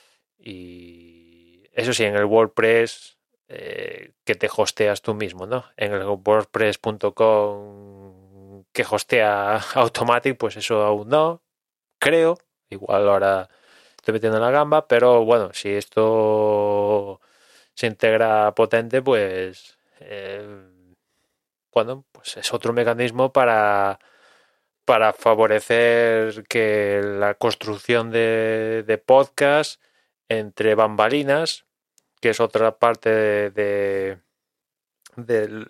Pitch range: 105-130 Hz